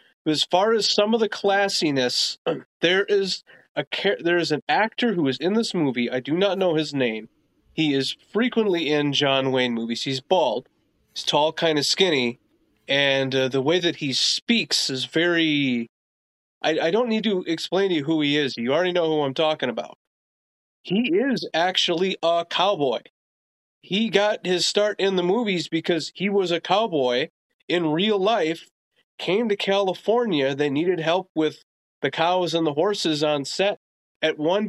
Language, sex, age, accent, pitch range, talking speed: English, male, 30-49, American, 145-200 Hz, 175 wpm